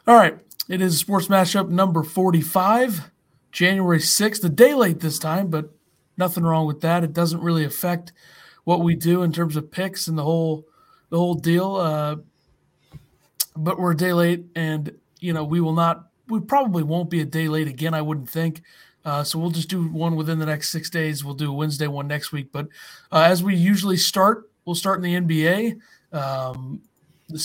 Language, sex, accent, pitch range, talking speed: English, male, American, 155-175 Hz, 200 wpm